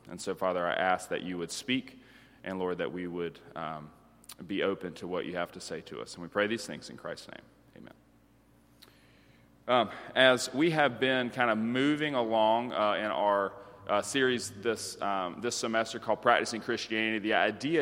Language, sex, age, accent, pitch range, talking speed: English, male, 30-49, American, 100-120 Hz, 190 wpm